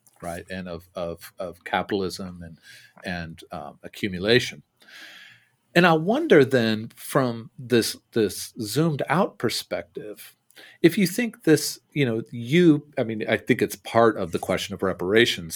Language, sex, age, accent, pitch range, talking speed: English, male, 40-59, American, 95-130 Hz, 145 wpm